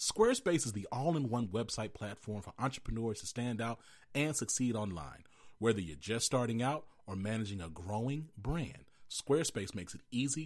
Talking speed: 160 wpm